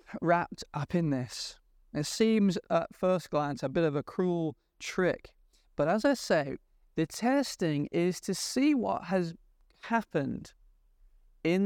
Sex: male